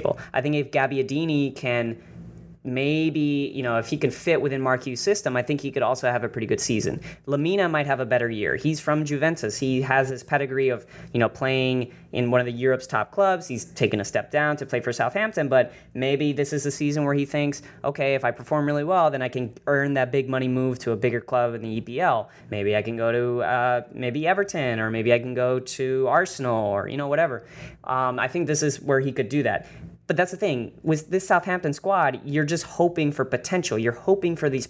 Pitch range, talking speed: 125-150 Hz, 230 wpm